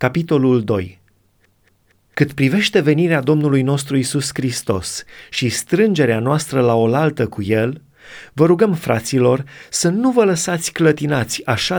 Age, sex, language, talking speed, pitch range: 30-49, male, Romanian, 125 wpm, 125-165 Hz